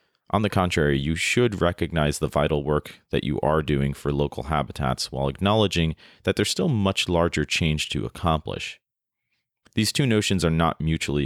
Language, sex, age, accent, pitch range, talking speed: English, male, 30-49, American, 70-90 Hz, 170 wpm